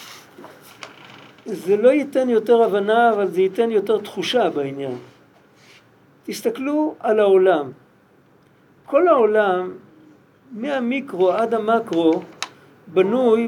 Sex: male